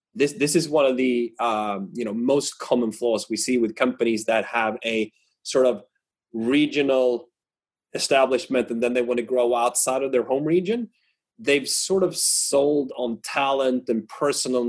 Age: 30-49